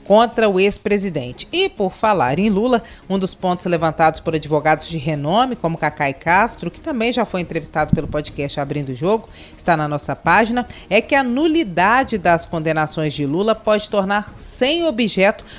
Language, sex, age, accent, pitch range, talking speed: Portuguese, female, 40-59, Brazilian, 165-230 Hz, 175 wpm